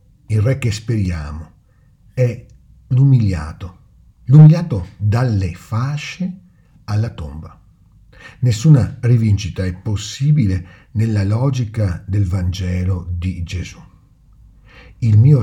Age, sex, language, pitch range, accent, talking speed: 50-69, male, Italian, 90-125 Hz, native, 90 wpm